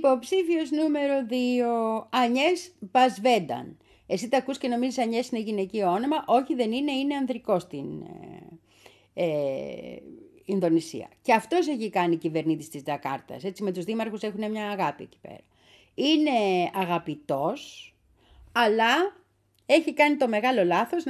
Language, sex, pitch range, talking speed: Greek, female, 180-275 Hz, 135 wpm